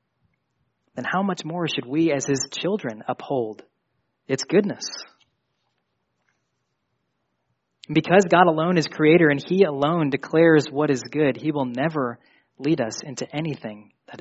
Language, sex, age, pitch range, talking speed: English, male, 20-39, 130-155 Hz, 135 wpm